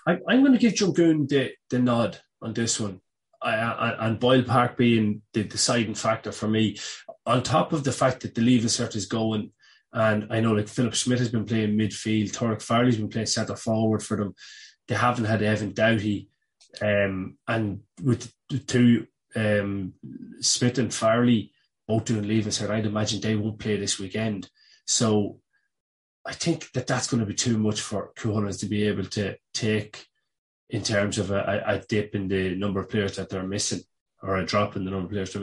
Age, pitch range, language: 20-39, 105-125 Hz, English